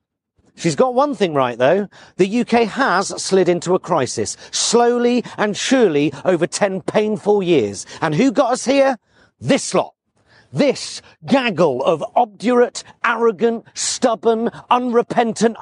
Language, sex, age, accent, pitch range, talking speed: English, male, 40-59, British, 195-250 Hz, 130 wpm